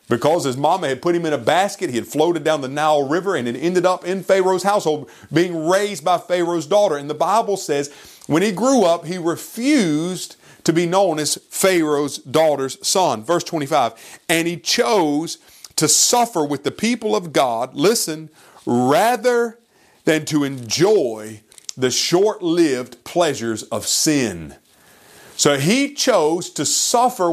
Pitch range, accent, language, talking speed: 135-190 Hz, American, English, 160 wpm